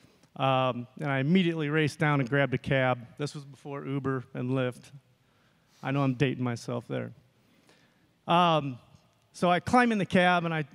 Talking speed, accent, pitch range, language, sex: 175 wpm, American, 130-160 Hz, English, male